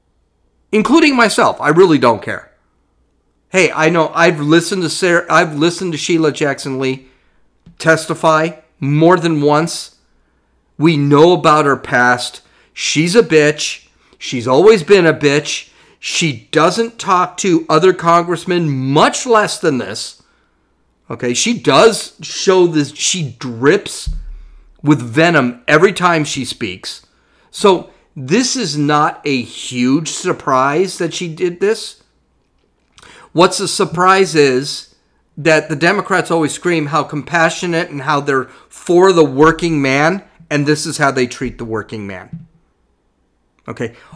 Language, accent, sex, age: English, American, male, 40-59